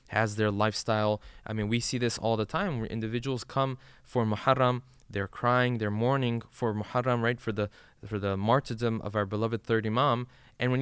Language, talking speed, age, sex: English, 195 wpm, 20-39, male